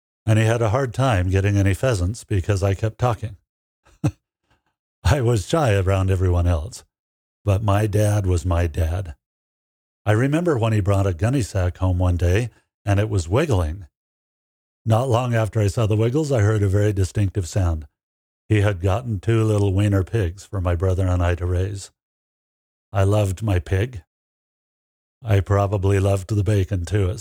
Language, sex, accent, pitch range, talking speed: English, male, American, 95-110 Hz, 170 wpm